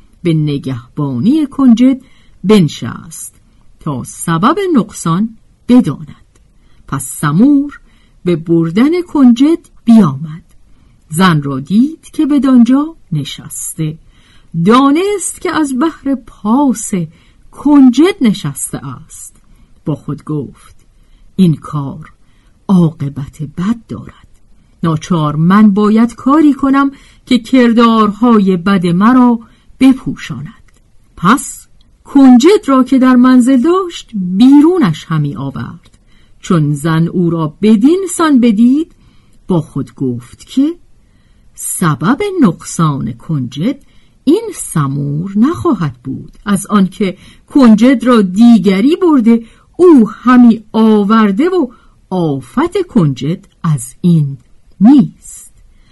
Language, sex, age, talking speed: Persian, female, 50-69, 95 wpm